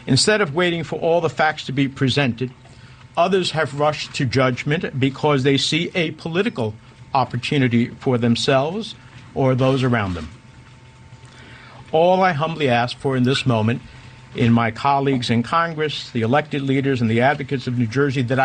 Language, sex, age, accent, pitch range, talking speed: English, male, 50-69, American, 130-160 Hz, 165 wpm